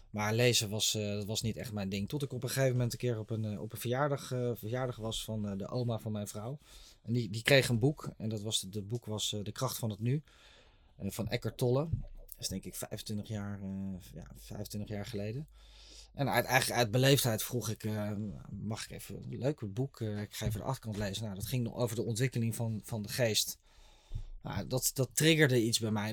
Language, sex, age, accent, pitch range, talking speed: Dutch, male, 20-39, Dutch, 110-125 Hz, 220 wpm